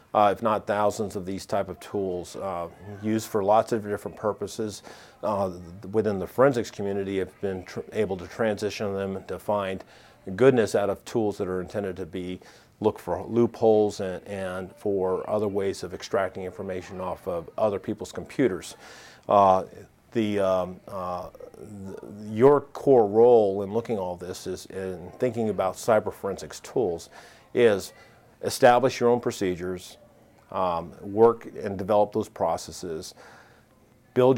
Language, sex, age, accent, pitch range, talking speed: English, male, 40-59, American, 95-110 Hz, 150 wpm